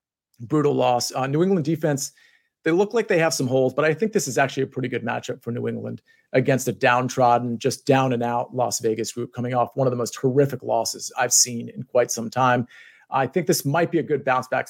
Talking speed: 235 wpm